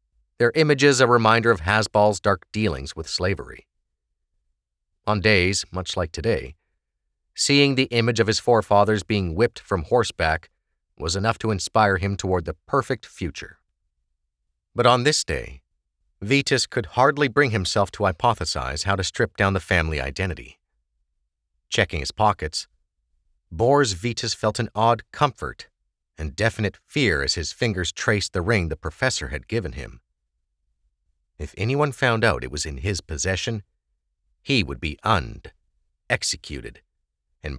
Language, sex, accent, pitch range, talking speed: English, male, American, 70-110 Hz, 145 wpm